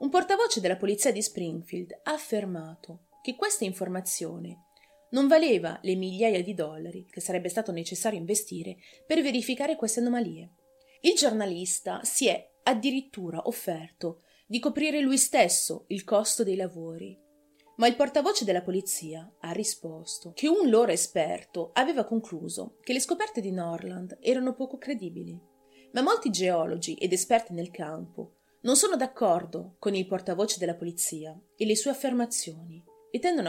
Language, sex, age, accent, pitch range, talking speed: Italian, female, 30-49, native, 175-260 Hz, 145 wpm